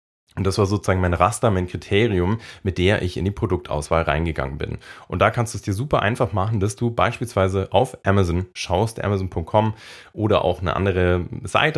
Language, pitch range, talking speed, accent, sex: German, 90-115 Hz, 190 wpm, German, male